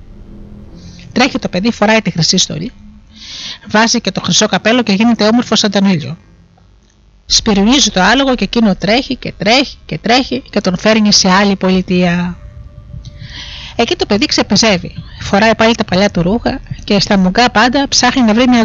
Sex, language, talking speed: female, Greek, 165 wpm